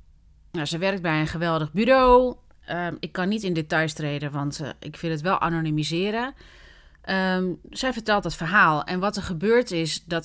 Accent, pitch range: Dutch, 155-195 Hz